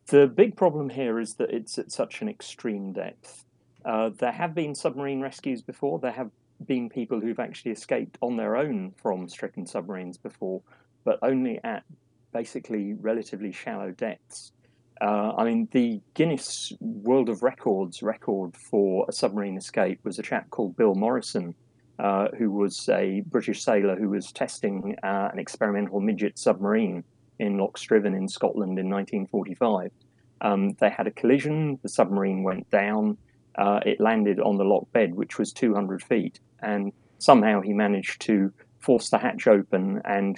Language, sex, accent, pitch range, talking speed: English, male, British, 100-140 Hz, 165 wpm